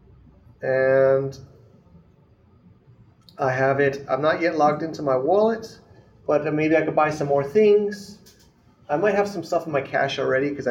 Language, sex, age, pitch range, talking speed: English, male, 30-49, 135-170 Hz, 160 wpm